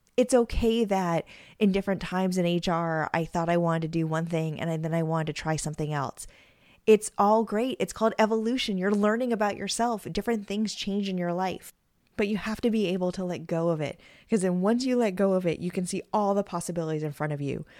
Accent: American